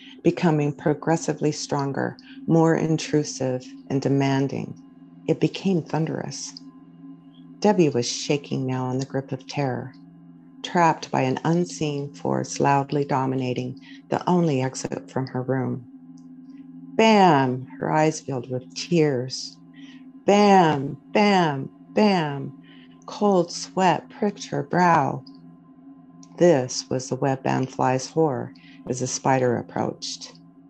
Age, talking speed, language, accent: 60-79, 110 wpm, English, American